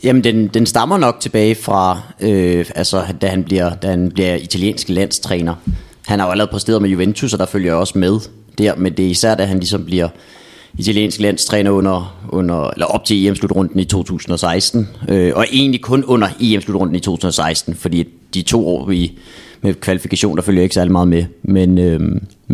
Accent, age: native, 30-49